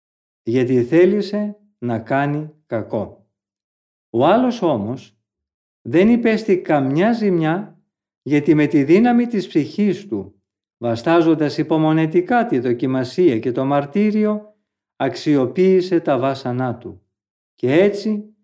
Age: 50-69